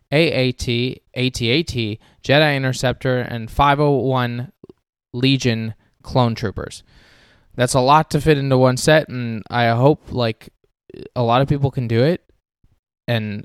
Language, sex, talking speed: English, male, 130 wpm